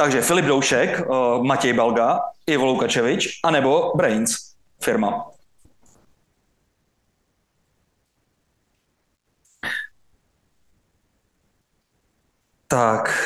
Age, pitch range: 30-49, 130-165 Hz